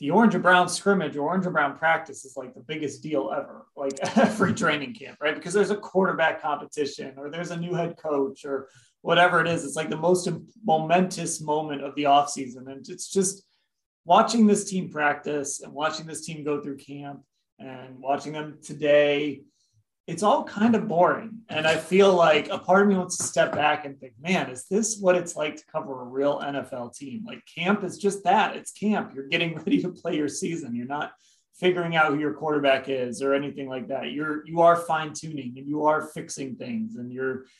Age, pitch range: 30-49, 140-185 Hz